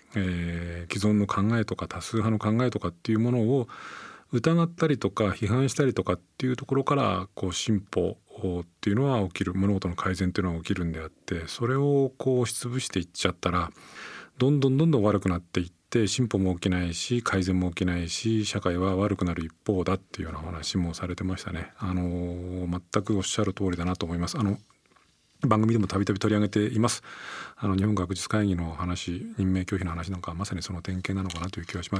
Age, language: 40-59, Japanese